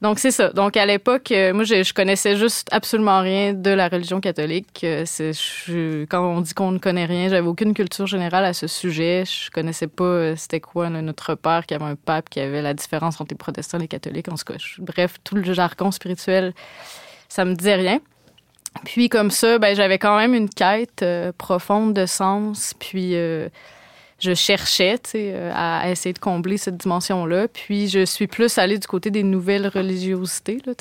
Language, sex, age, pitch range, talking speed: French, female, 20-39, 180-205 Hz, 205 wpm